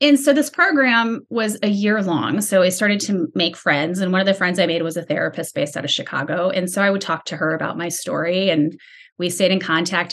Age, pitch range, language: 30-49, 160-200 Hz, English